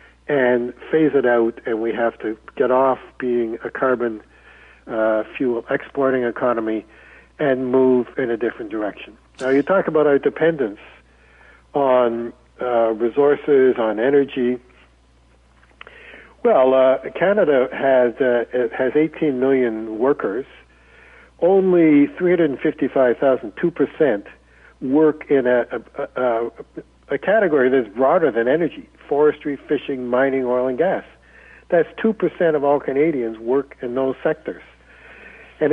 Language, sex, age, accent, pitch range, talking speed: English, male, 60-79, American, 125-155 Hz, 125 wpm